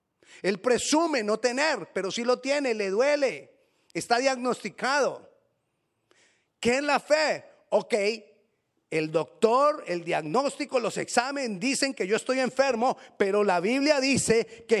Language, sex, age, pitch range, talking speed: Spanish, male, 40-59, 200-265 Hz, 135 wpm